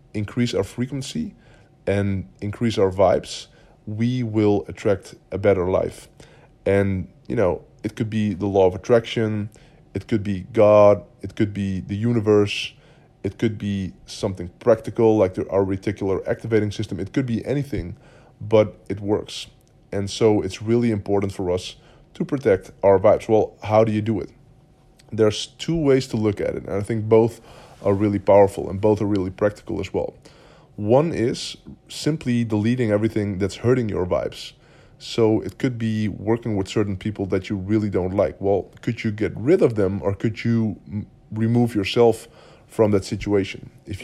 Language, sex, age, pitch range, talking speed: English, male, 20-39, 100-120 Hz, 170 wpm